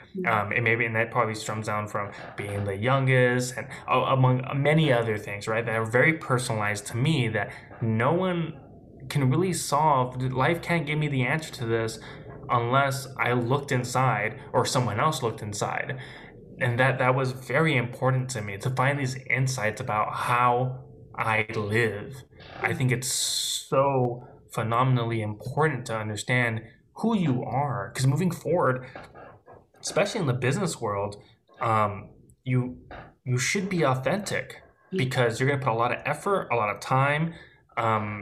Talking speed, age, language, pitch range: 160 wpm, 20-39, English, 115-145 Hz